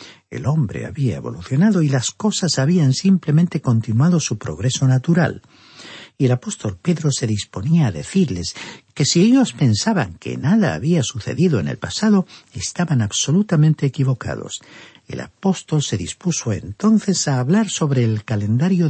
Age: 60-79